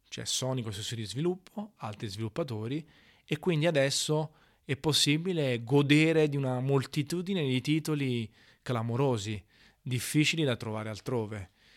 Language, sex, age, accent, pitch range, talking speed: Italian, male, 30-49, native, 120-150 Hz, 115 wpm